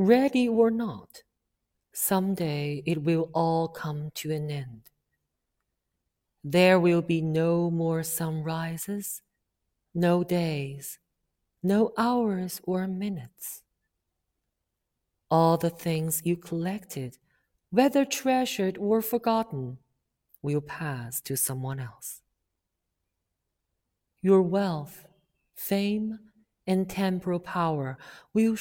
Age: 50-69